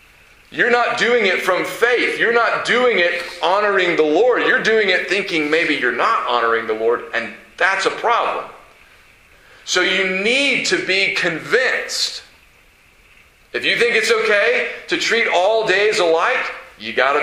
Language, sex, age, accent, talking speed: English, male, 40-59, American, 160 wpm